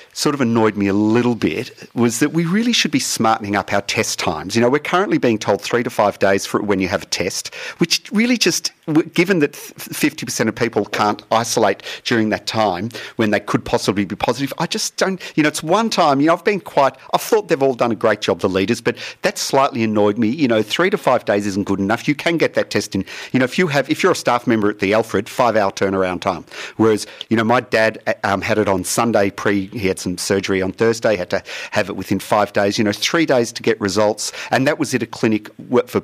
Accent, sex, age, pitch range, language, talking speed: Australian, male, 40-59, 100-125 Hz, English, 250 wpm